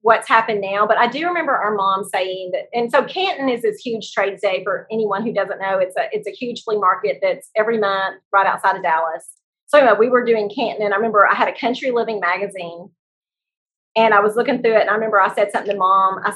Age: 30-49